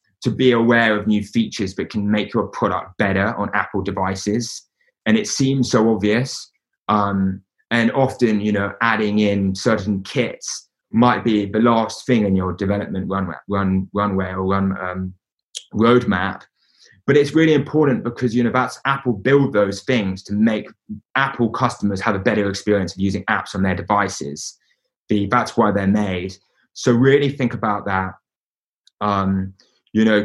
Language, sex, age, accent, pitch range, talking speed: English, male, 20-39, British, 100-115 Hz, 165 wpm